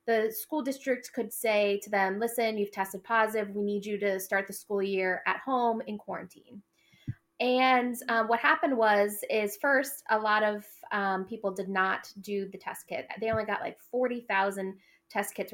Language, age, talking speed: English, 20-39, 185 wpm